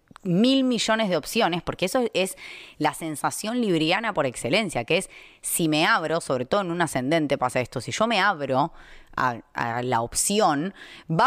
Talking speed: 175 wpm